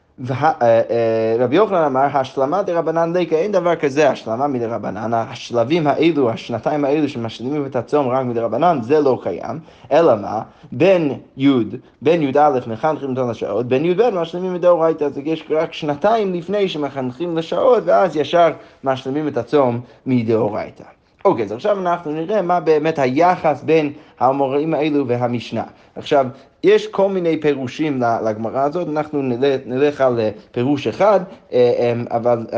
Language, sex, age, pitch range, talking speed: Hebrew, male, 20-39, 120-160 Hz, 140 wpm